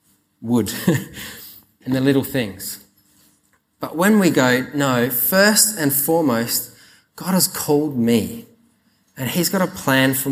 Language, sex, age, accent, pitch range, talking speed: English, male, 30-49, Australian, 120-155 Hz, 135 wpm